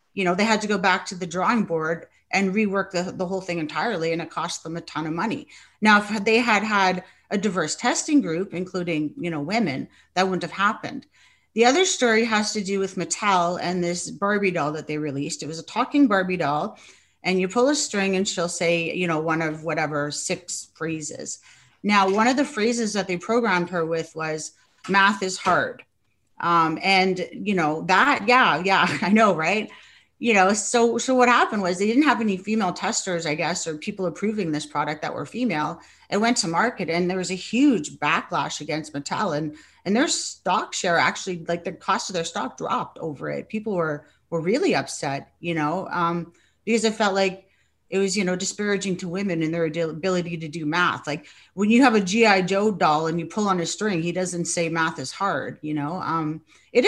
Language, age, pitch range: English, 30-49, 165-210 Hz